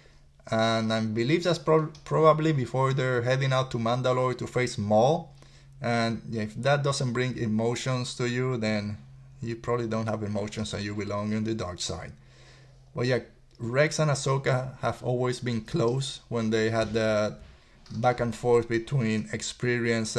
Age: 20-39